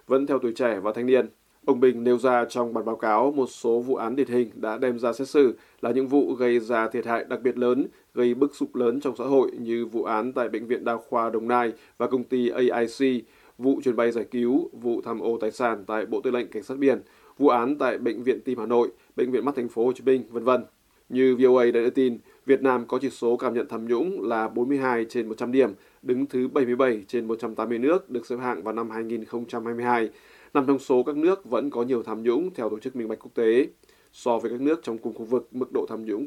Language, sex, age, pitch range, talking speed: Vietnamese, male, 20-39, 115-130 Hz, 250 wpm